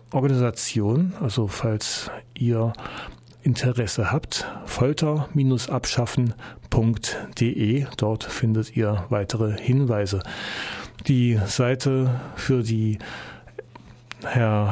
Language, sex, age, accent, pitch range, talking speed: German, male, 40-59, German, 115-145 Hz, 70 wpm